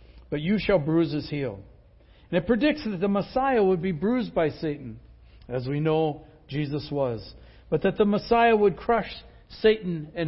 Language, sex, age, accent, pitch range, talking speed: English, male, 60-79, American, 150-220 Hz, 175 wpm